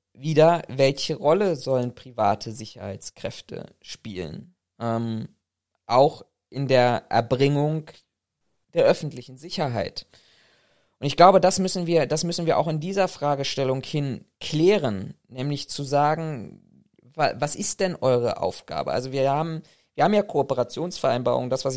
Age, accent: 20-39, German